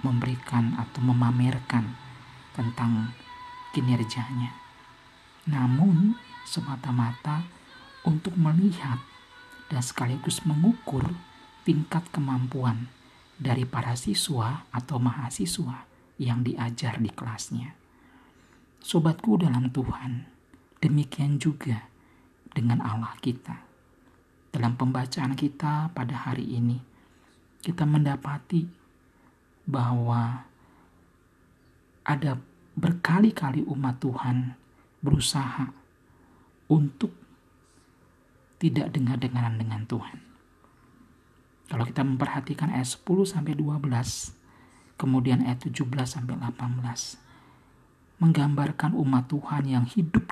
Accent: native